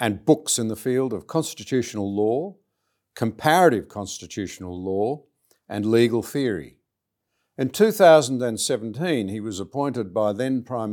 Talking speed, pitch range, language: 120 wpm, 105-135 Hz, English